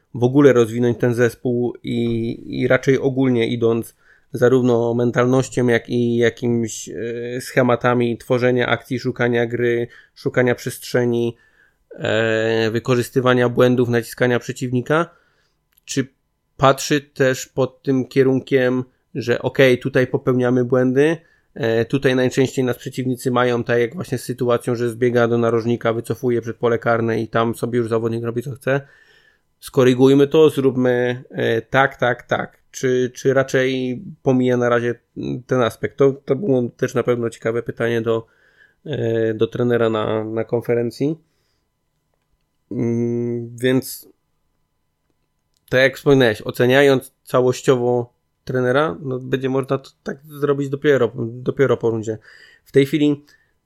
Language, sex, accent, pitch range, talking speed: Polish, male, native, 120-130 Hz, 125 wpm